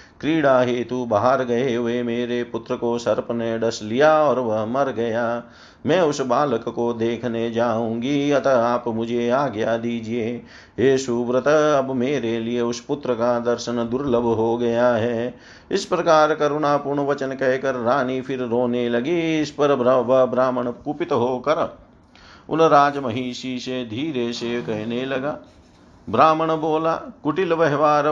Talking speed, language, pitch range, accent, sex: 140 wpm, Hindi, 120-140 Hz, native, male